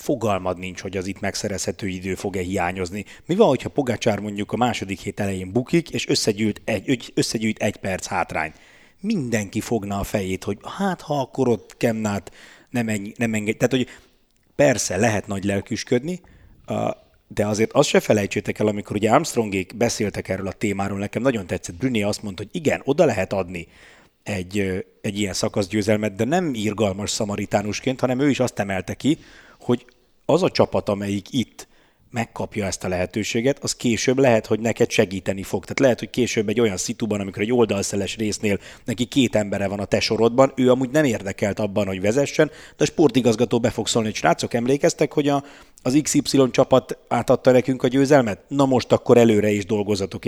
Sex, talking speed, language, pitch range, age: male, 175 wpm, Hungarian, 100-125 Hz, 30-49